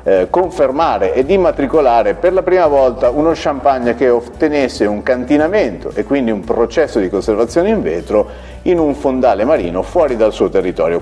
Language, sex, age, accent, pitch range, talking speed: Italian, male, 50-69, native, 110-155 Hz, 160 wpm